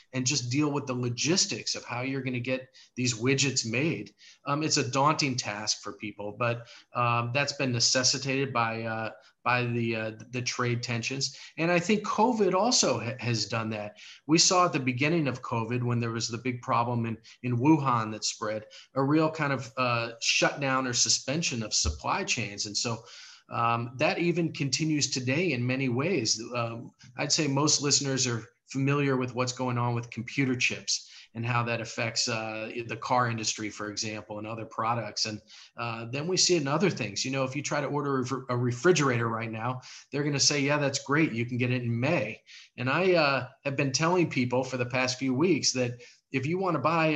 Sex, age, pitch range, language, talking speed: male, 40-59, 120-145 Hz, English, 205 wpm